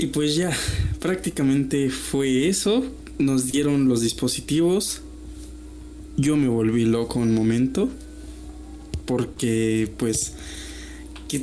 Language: Spanish